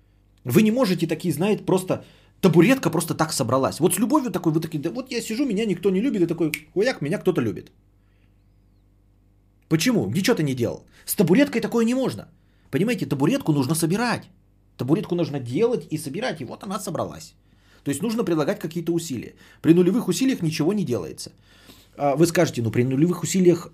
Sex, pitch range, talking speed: male, 120-170 Hz, 175 wpm